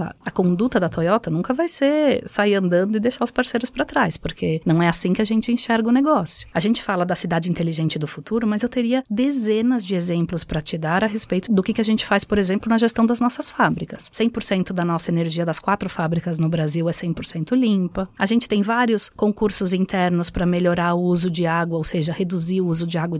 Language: Portuguese